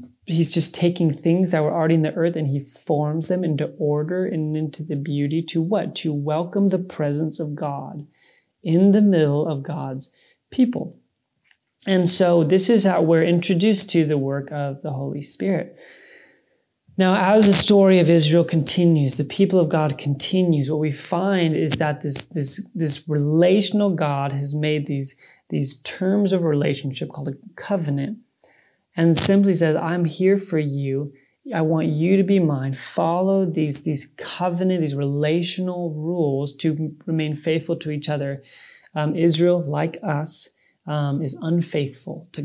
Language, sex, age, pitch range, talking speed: English, male, 30-49, 150-175 Hz, 160 wpm